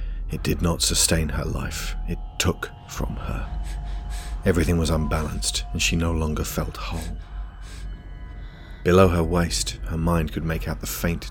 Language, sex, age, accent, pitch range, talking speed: English, male, 30-49, British, 75-90 Hz, 155 wpm